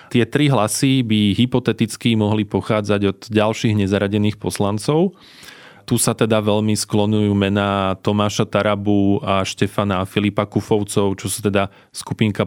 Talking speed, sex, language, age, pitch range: 130 wpm, male, Slovak, 20-39, 100-110 Hz